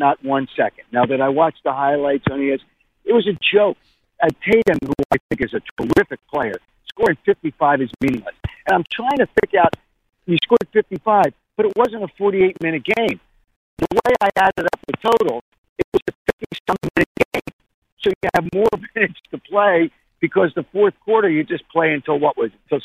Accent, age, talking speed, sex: American, 50-69, 200 wpm, male